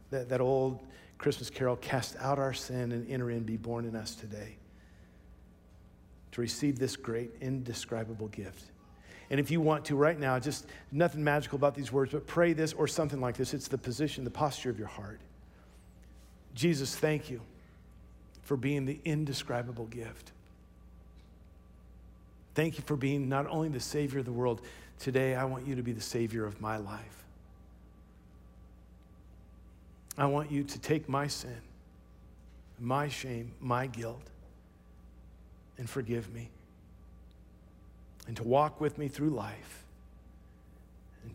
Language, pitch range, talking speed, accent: English, 85-135 Hz, 150 wpm, American